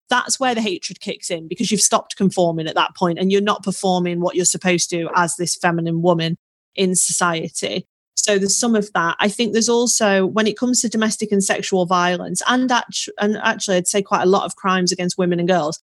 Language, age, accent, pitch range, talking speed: English, 30-49, British, 180-210 Hz, 220 wpm